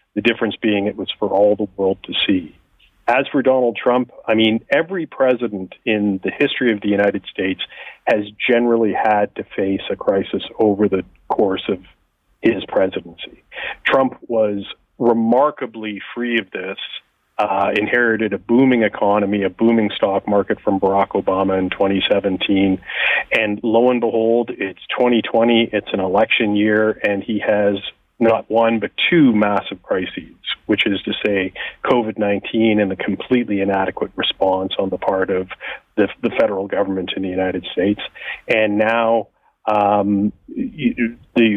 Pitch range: 100-120 Hz